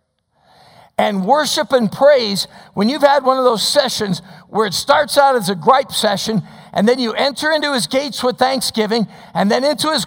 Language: English